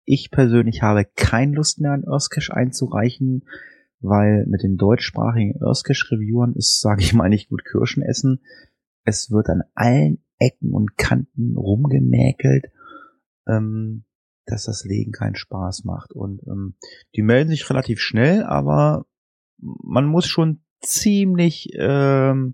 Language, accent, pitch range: German, German, 100-130 Hz